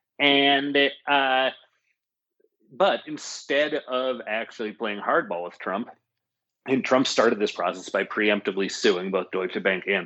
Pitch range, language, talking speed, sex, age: 100-125 Hz, English, 130 wpm, male, 30-49